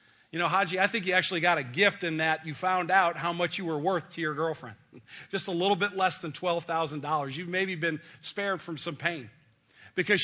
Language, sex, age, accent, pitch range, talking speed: English, male, 40-59, American, 145-195 Hz, 225 wpm